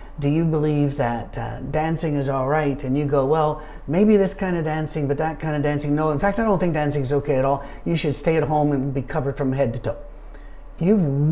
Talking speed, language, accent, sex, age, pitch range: 250 wpm, English, American, male, 50-69, 140-160 Hz